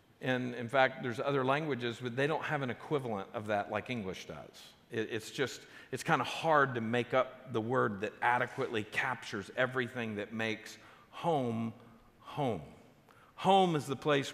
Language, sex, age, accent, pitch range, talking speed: English, male, 50-69, American, 120-160 Hz, 165 wpm